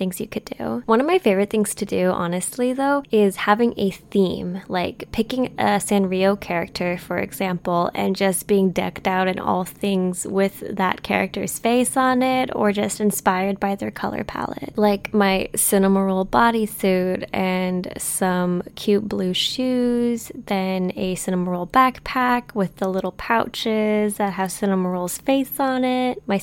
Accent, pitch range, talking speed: American, 190-230 Hz, 155 wpm